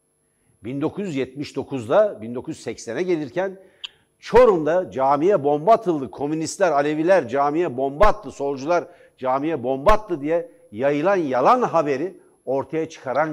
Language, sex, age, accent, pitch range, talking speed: Turkish, male, 60-79, native, 135-195 Hz, 100 wpm